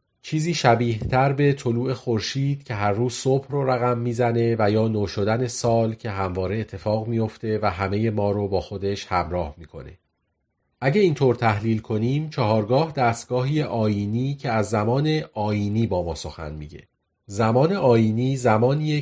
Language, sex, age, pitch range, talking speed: Persian, male, 40-59, 100-130 Hz, 150 wpm